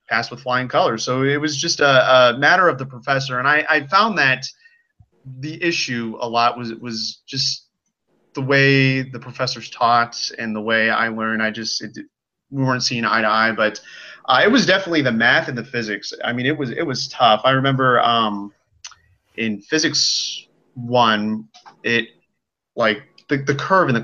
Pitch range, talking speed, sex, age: 110-135 Hz, 185 wpm, male, 30-49